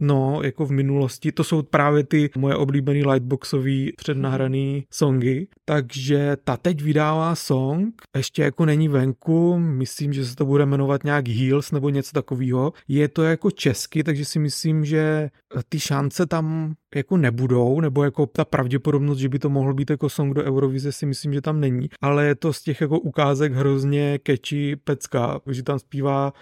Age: 30-49